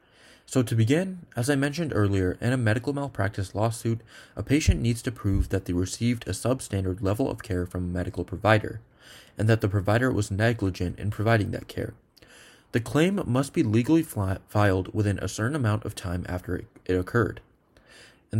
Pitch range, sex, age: 95-120 Hz, male, 20-39